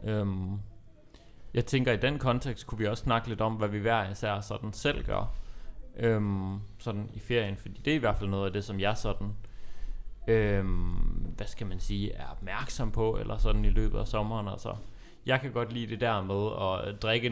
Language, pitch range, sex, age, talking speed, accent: Danish, 100-115 Hz, male, 30-49, 210 wpm, native